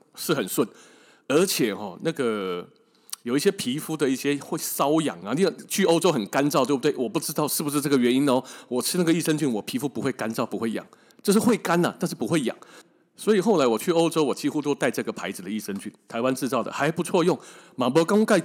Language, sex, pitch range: Chinese, male, 145-225 Hz